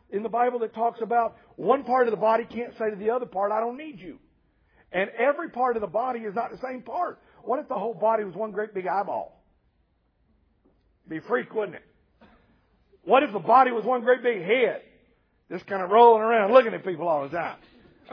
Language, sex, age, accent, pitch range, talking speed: English, male, 50-69, American, 180-255 Hz, 225 wpm